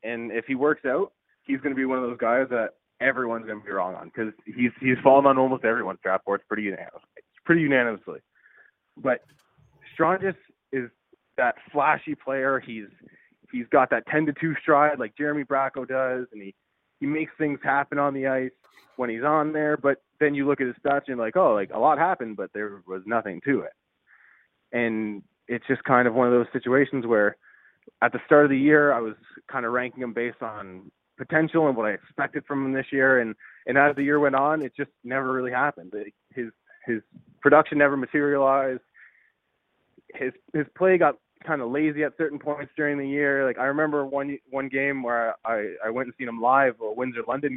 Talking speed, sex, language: 205 wpm, male, English